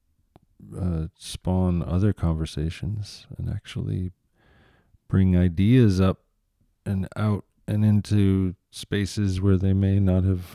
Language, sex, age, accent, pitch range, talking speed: English, male, 40-59, American, 90-110 Hz, 110 wpm